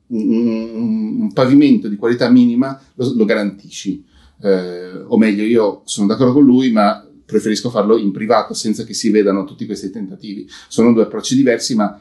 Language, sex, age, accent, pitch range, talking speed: Italian, male, 40-59, native, 110-150 Hz, 175 wpm